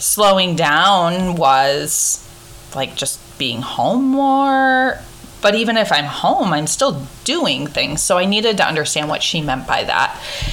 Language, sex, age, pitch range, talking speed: English, female, 20-39, 150-205 Hz, 155 wpm